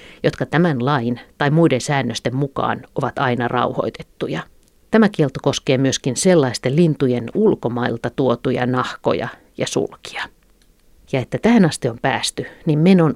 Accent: native